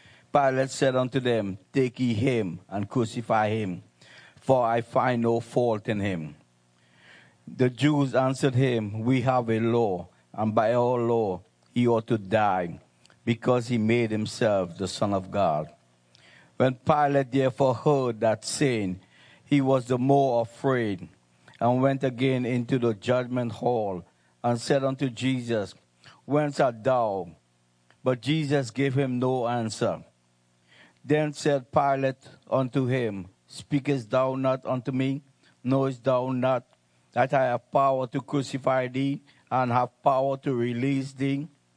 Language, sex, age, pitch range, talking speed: English, male, 50-69, 110-135 Hz, 140 wpm